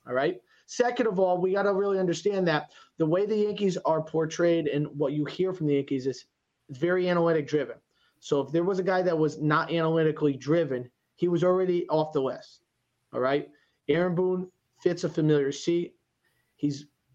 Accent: American